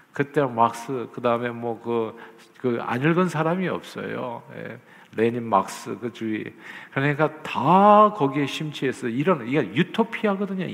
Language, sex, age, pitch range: Korean, male, 50-69, 115-185 Hz